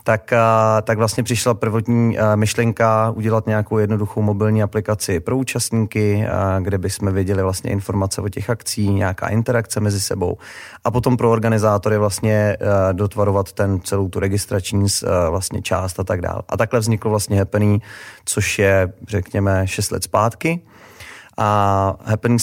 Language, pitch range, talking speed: Czech, 100-115 Hz, 145 wpm